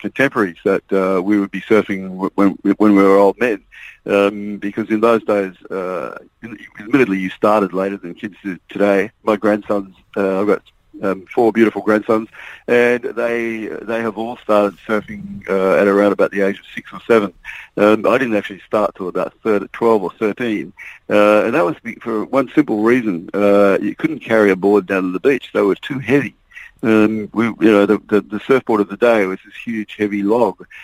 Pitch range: 100-110 Hz